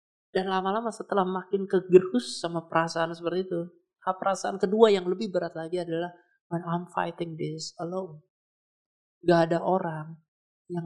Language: Indonesian